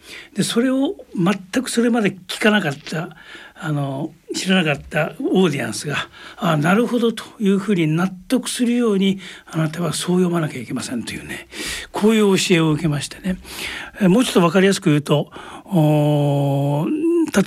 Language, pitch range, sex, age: Japanese, 150-210 Hz, male, 60-79